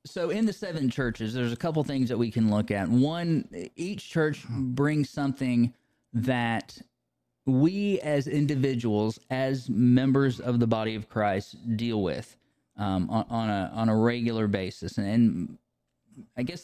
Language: English